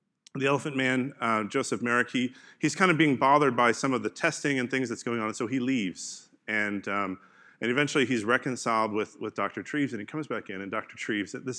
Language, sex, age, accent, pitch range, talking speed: English, male, 30-49, American, 95-125 Hz, 235 wpm